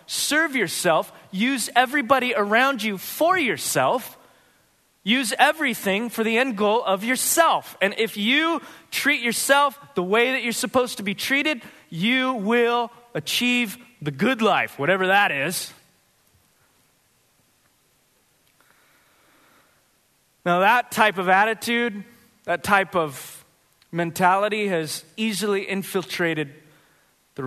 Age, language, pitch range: 30-49, English, 155-230 Hz